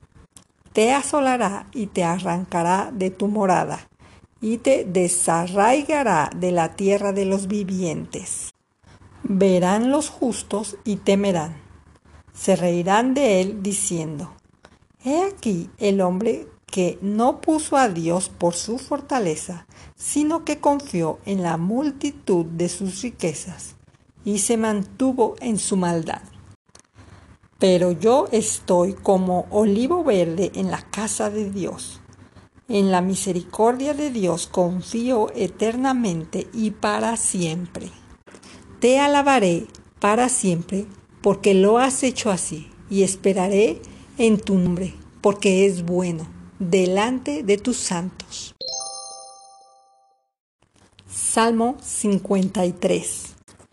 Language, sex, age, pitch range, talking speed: Spanish, female, 50-69, 175-230 Hz, 110 wpm